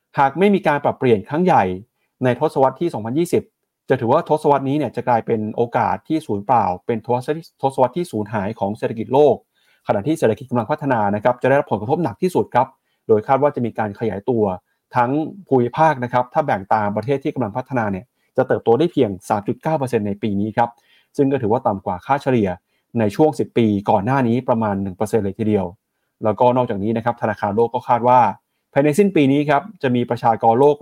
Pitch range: 110-140 Hz